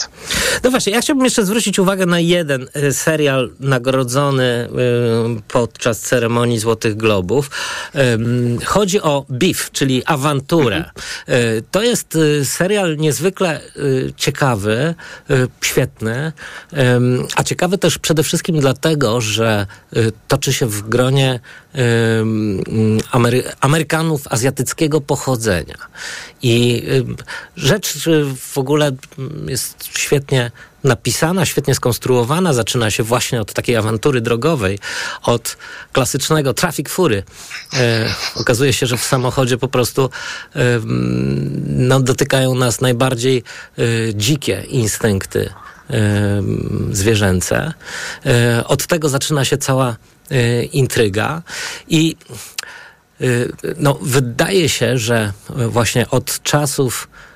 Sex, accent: male, native